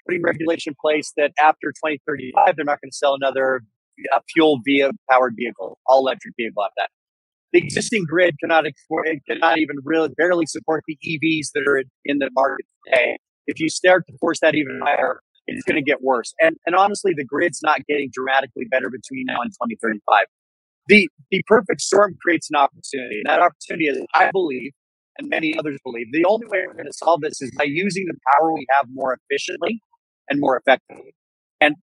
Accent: American